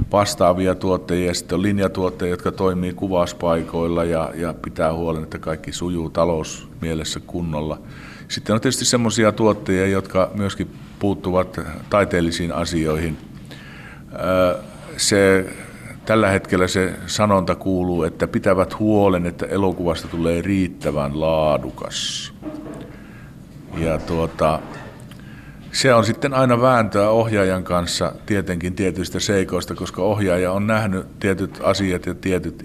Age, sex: 50-69, male